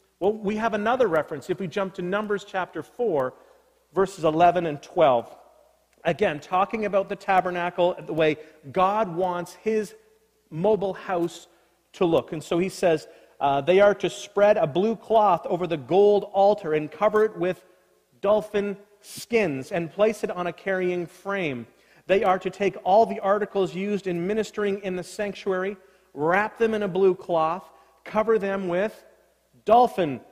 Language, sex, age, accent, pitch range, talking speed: English, male, 40-59, American, 170-215 Hz, 160 wpm